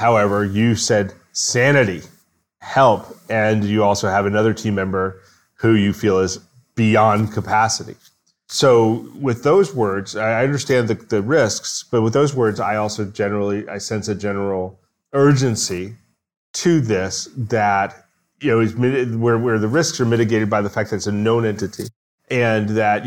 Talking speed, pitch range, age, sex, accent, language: 155 wpm, 100-120 Hz, 30-49, male, American, English